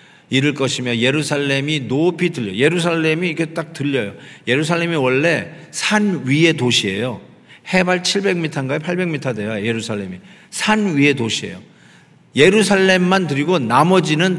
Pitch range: 145-195 Hz